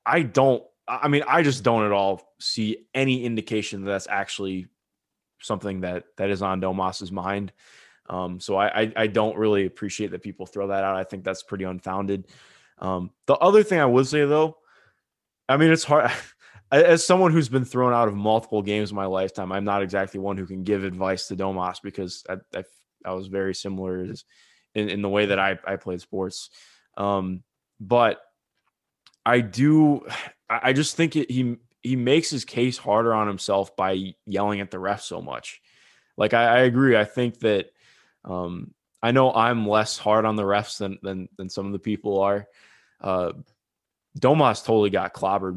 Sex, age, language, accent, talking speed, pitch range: male, 20-39, English, American, 190 wpm, 95-120 Hz